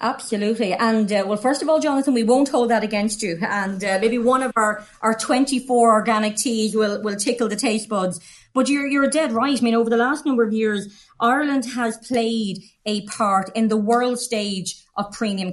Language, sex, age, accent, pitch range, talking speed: English, female, 30-49, Irish, 205-245 Hz, 210 wpm